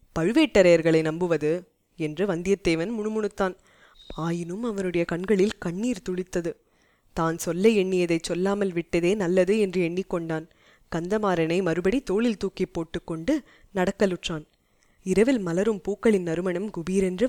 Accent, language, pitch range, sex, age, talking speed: native, Tamil, 175-215 Hz, female, 20-39, 100 wpm